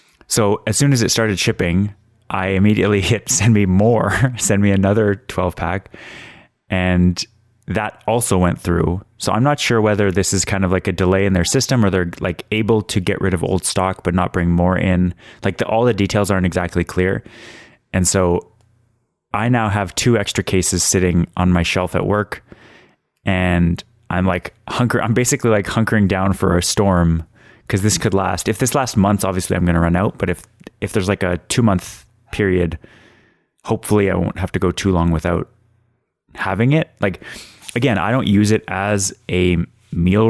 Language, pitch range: English, 90-110 Hz